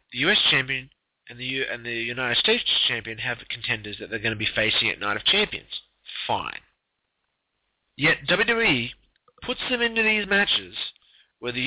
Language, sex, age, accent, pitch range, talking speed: English, male, 30-49, American, 130-215 Hz, 170 wpm